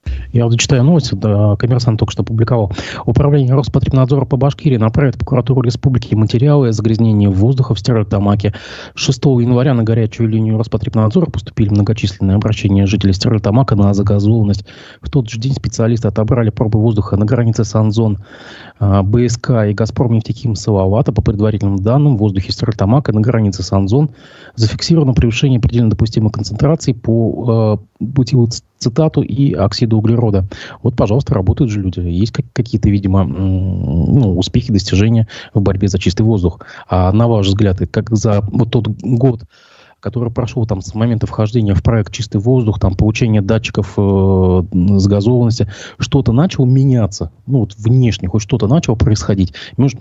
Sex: male